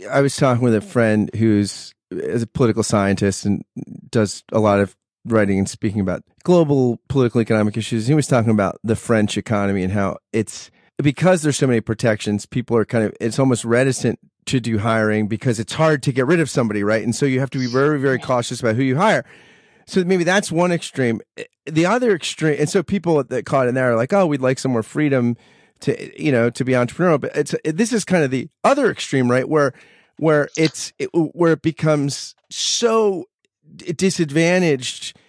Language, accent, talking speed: English, American, 200 wpm